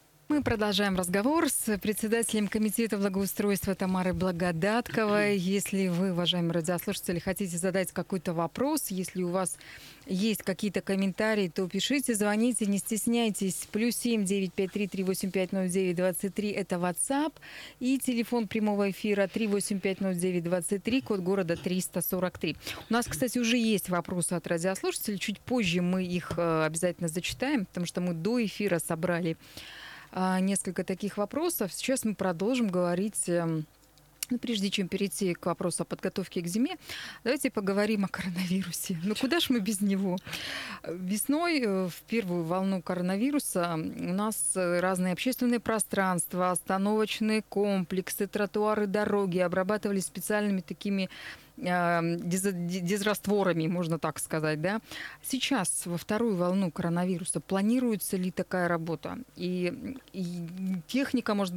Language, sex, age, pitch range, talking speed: Russian, female, 30-49, 180-215 Hz, 120 wpm